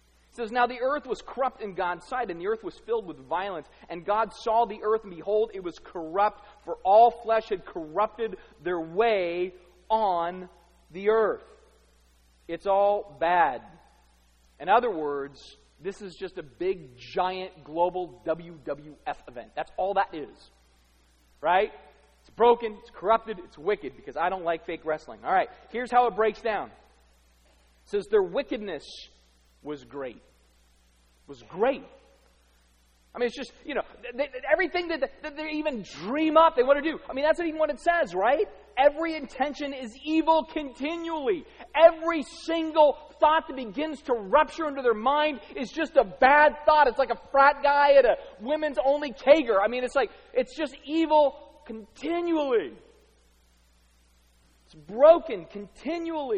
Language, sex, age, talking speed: English, male, 30-49, 165 wpm